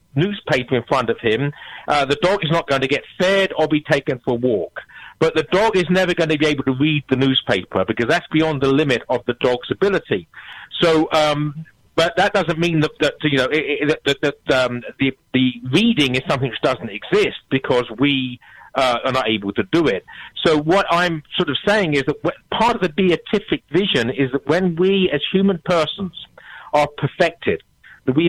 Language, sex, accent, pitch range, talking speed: English, male, British, 140-175 Hz, 205 wpm